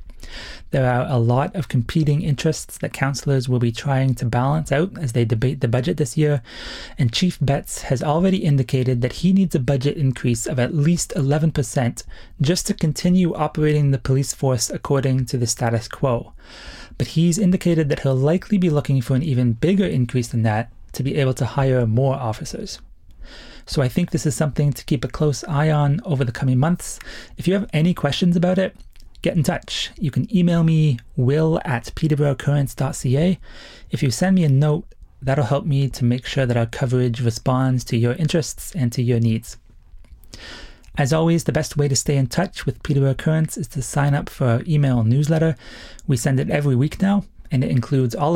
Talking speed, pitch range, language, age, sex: 195 wpm, 125-155 Hz, English, 30-49, male